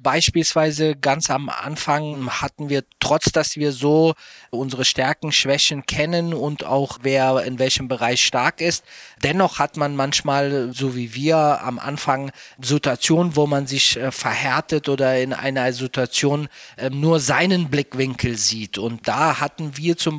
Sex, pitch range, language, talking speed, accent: male, 135-155 Hz, German, 145 wpm, German